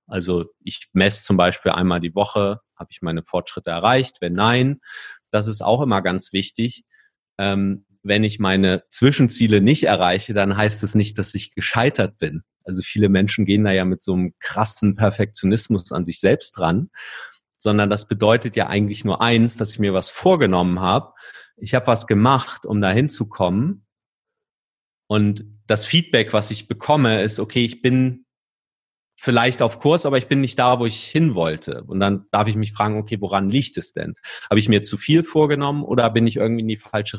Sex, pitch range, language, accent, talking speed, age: male, 95-115 Hz, German, German, 190 wpm, 40-59